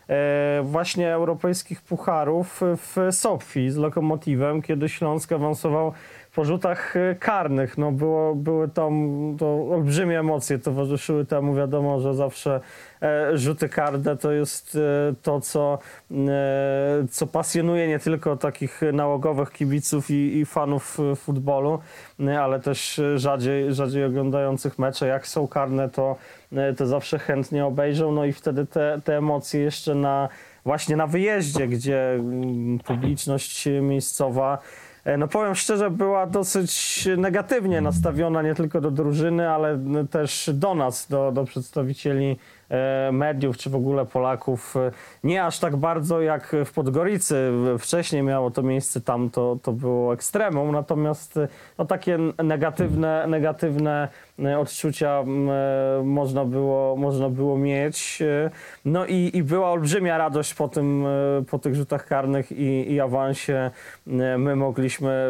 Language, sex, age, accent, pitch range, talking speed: Polish, male, 20-39, native, 135-155 Hz, 125 wpm